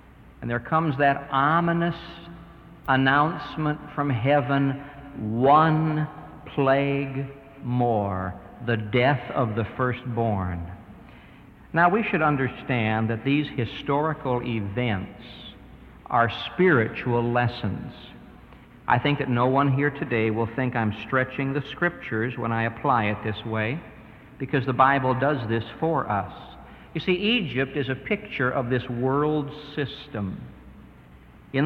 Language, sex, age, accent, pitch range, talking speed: English, male, 60-79, American, 115-150 Hz, 120 wpm